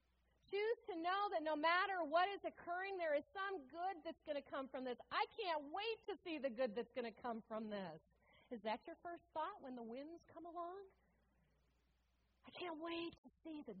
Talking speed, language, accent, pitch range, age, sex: 210 wpm, English, American, 195-285 Hz, 40-59, female